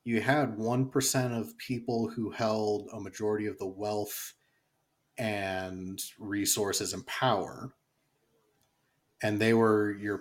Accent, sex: American, male